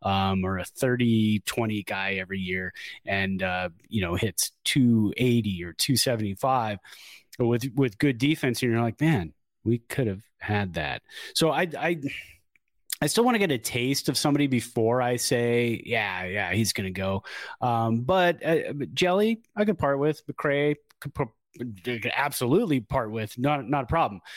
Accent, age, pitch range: American, 30-49, 110-145 Hz